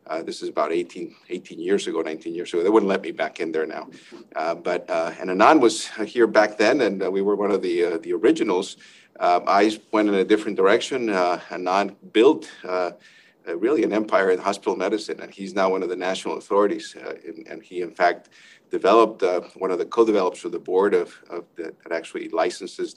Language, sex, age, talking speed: English, male, 50-69, 220 wpm